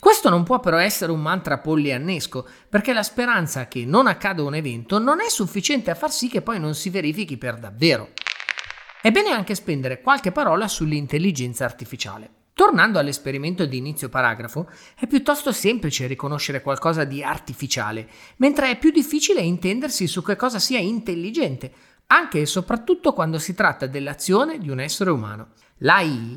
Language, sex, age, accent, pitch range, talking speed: Italian, male, 30-49, native, 135-215 Hz, 160 wpm